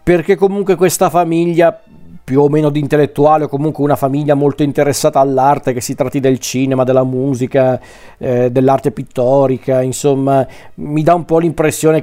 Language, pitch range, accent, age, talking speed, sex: Italian, 135-160 Hz, native, 40-59, 160 wpm, male